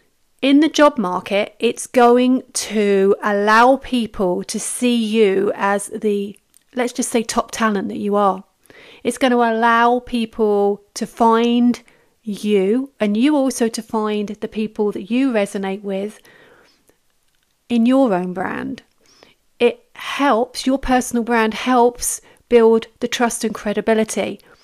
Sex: female